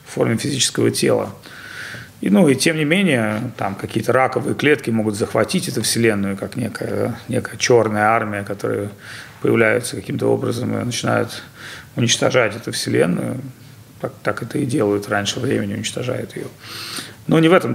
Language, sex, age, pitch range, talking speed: Russian, male, 40-59, 110-135 Hz, 150 wpm